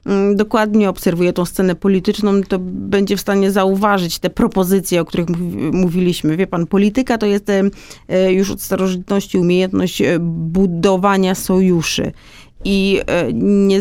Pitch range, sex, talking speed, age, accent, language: 175-205 Hz, female, 120 wpm, 30-49, native, Polish